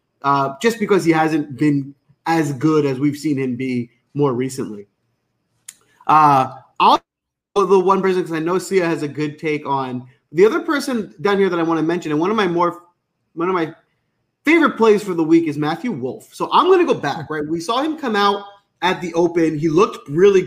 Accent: American